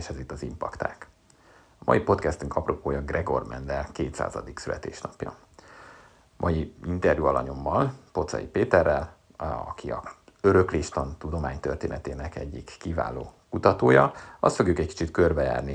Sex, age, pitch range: male, 50-69, 75-90 Hz